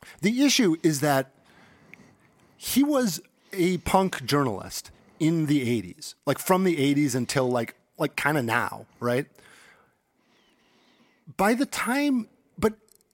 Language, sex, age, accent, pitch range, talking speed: English, male, 40-59, American, 125-185 Hz, 125 wpm